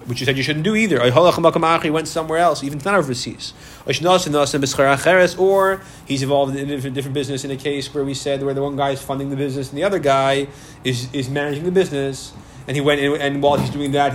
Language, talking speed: English, 225 wpm